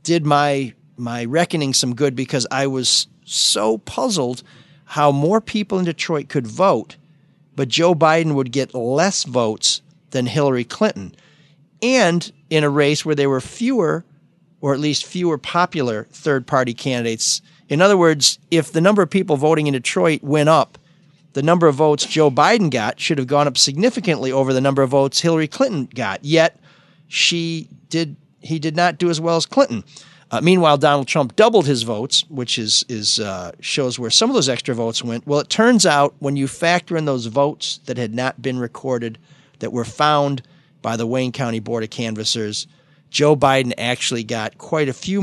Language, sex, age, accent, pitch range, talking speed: English, male, 40-59, American, 130-165 Hz, 185 wpm